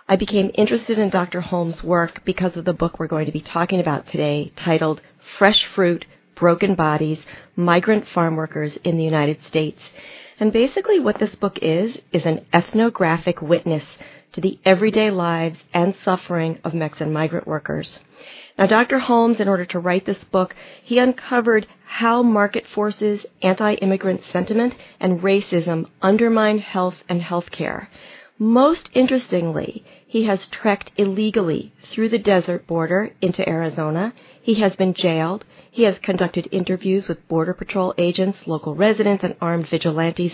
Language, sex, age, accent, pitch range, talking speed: English, female, 40-59, American, 165-205 Hz, 150 wpm